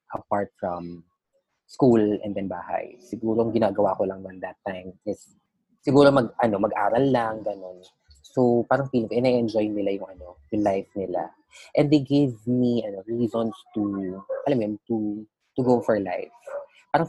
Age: 20-39